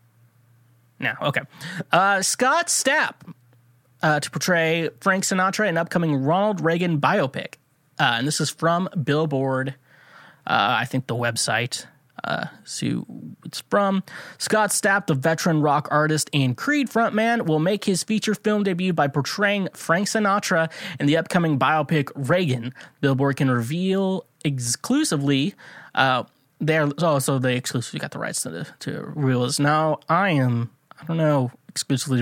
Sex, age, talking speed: male, 20-39, 145 wpm